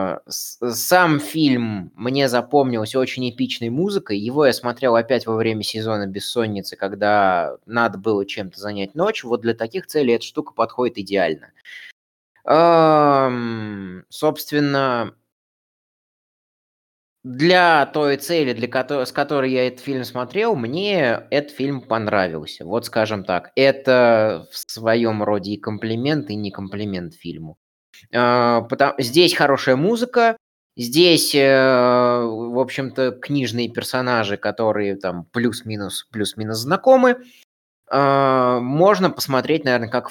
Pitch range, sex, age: 105-135 Hz, male, 20-39